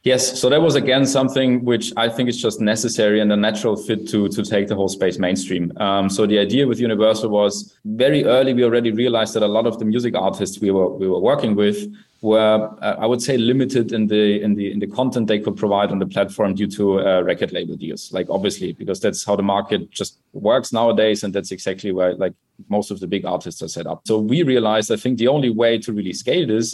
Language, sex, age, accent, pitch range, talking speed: English, male, 30-49, German, 100-115 Hz, 240 wpm